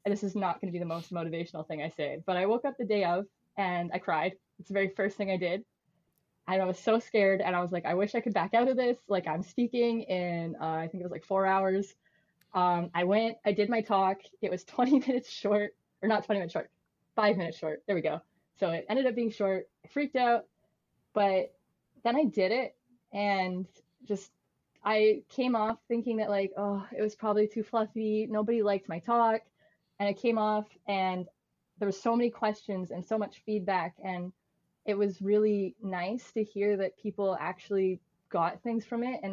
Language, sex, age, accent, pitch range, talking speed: English, female, 20-39, American, 175-215 Hz, 220 wpm